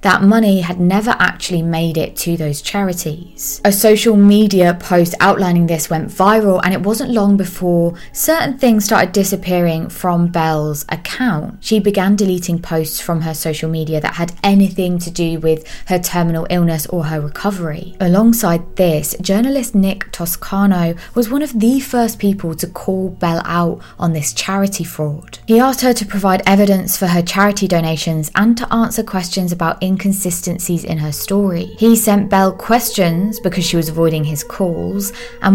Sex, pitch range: female, 170-205 Hz